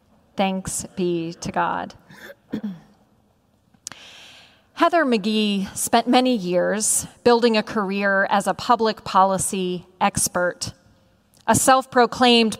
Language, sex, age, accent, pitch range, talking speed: English, female, 40-59, American, 190-250 Hz, 90 wpm